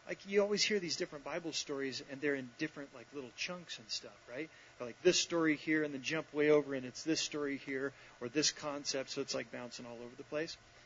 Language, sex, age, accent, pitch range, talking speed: English, male, 40-59, American, 130-175 Hz, 245 wpm